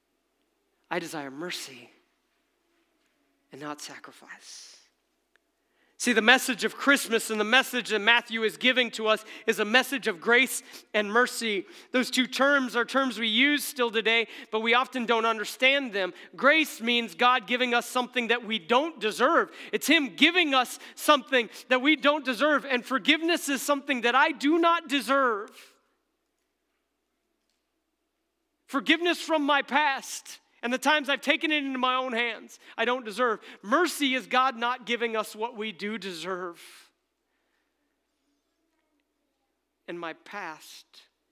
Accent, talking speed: American, 145 wpm